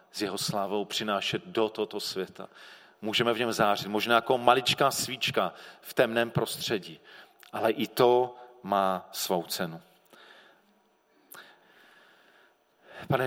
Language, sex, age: Czech, male, 40-59